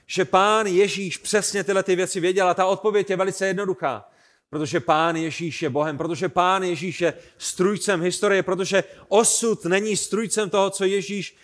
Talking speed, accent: 170 wpm, native